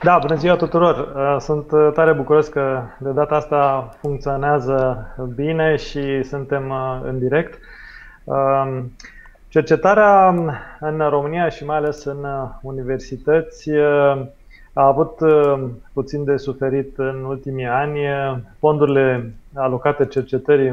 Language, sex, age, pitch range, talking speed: Romanian, male, 20-39, 130-150 Hz, 105 wpm